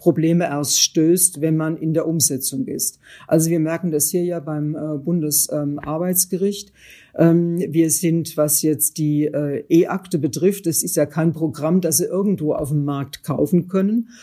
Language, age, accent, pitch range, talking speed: German, 50-69, German, 150-175 Hz, 175 wpm